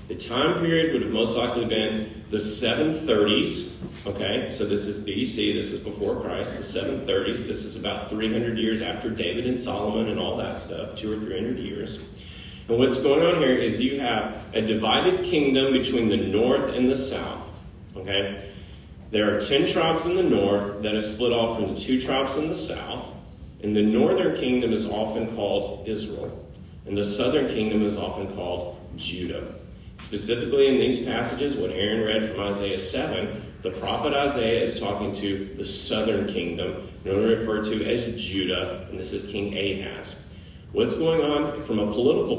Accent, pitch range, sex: American, 100-125 Hz, male